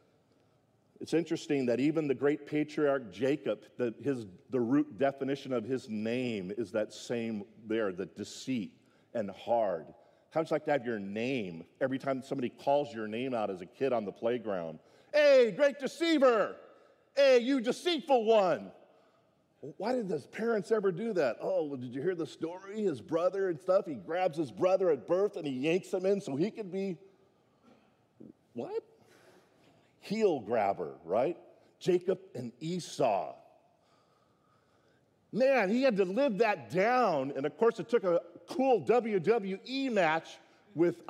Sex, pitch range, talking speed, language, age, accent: male, 130-205 Hz, 155 wpm, English, 40-59, American